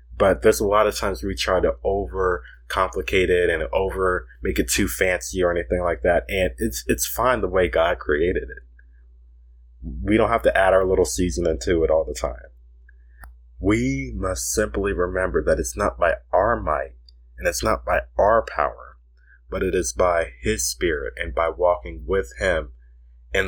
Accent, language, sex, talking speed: American, English, male, 180 wpm